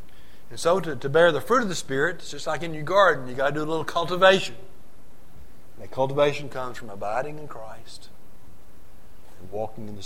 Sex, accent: male, American